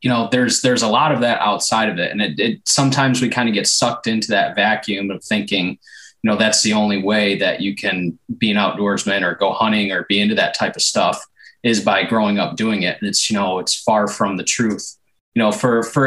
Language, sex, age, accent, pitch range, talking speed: English, male, 20-39, American, 100-120 Hz, 245 wpm